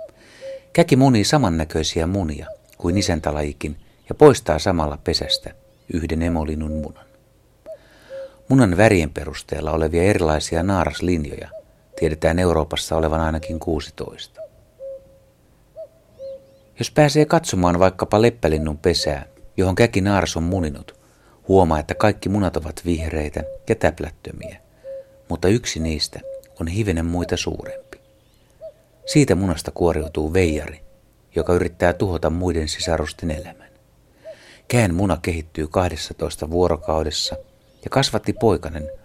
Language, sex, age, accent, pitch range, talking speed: Finnish, male, 60-79, native, 80-110 Hz, 105 wpm